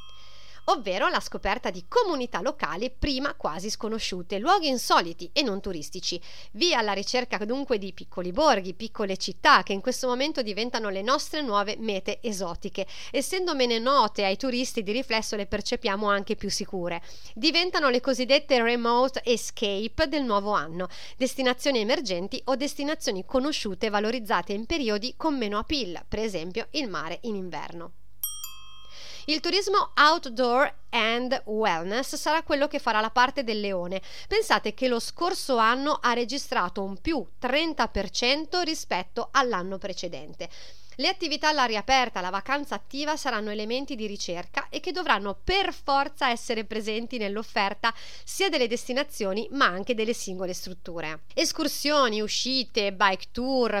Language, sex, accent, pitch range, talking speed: Italian, female, native, 205-275 Hz, 140 wpm